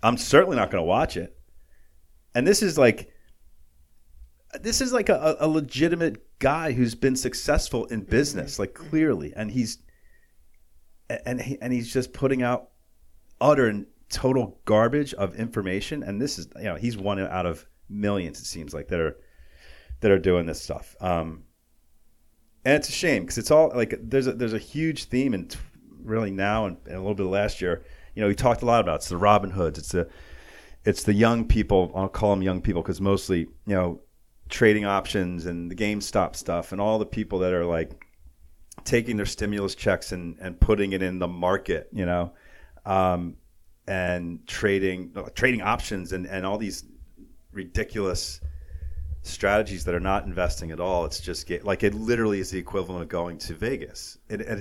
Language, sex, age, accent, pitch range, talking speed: English, male, 40-59, American, 80-110 Hz, 190 wpm